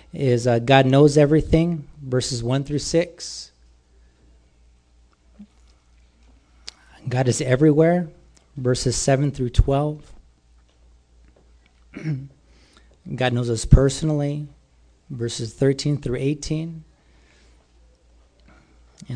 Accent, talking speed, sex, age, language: American, 75 wpm, male, 40-59, English